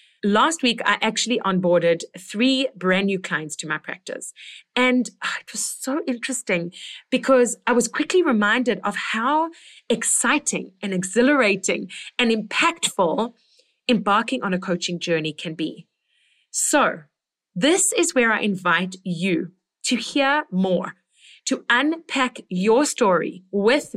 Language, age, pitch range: English, 30-49, 190-265 Hz